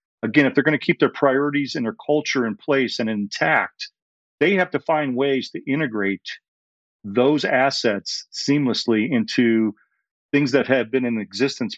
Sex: male